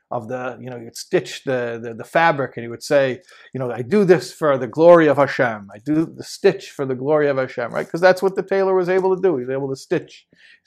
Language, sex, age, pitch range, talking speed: English, male, 50-69, 140-195 Hz, 280 wpm